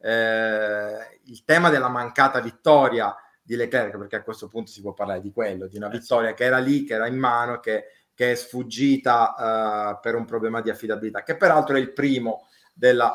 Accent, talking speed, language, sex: native, 195 wpm, Italian, male